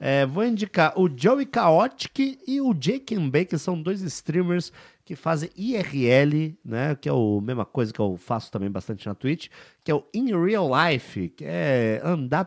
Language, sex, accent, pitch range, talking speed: Portuguese, male, Brazilian, 125-185 Hz, 190 wpm